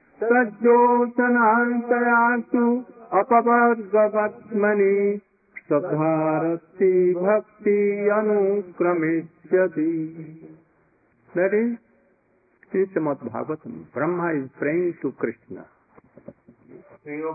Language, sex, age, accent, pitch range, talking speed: English, male, 50-69, Indian, 155-220 Hz, 55 wpm